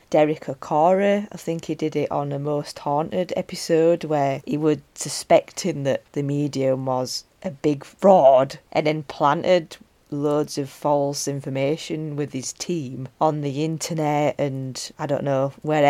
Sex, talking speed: female, 155 wpm